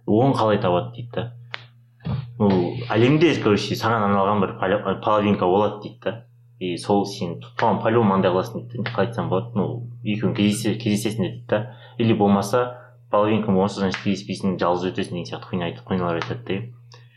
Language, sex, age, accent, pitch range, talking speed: Russian, male, 30-49, Turkish, 105-125 Hz, 120 wpm